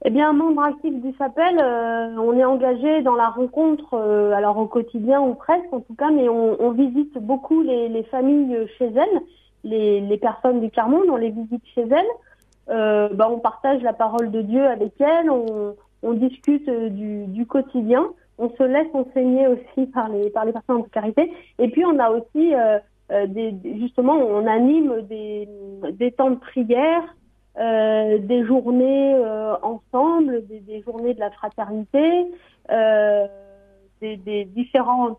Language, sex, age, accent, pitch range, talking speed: French, female, 40-59, French, 220-275 Hz, 170 wpm